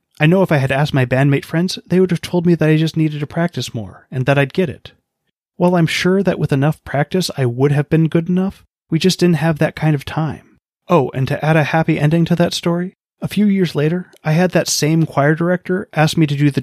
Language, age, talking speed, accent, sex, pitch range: English, 30-49, 260 wpm, American, male, 135-170 Hz